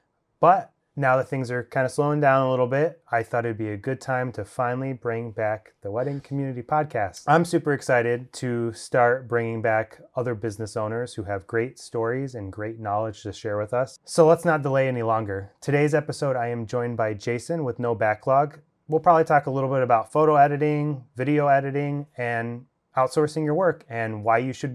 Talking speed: 200 wpm